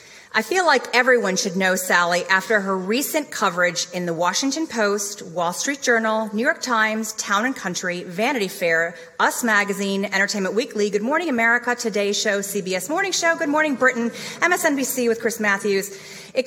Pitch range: 195-245 Hz